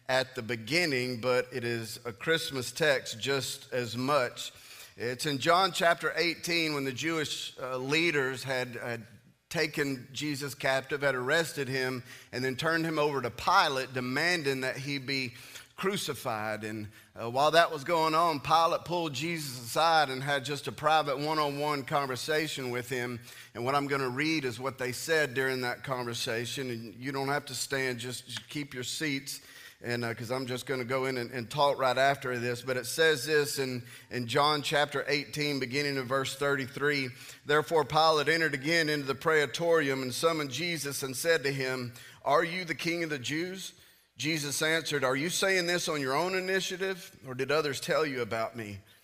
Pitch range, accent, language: 125-155 Hz, American, English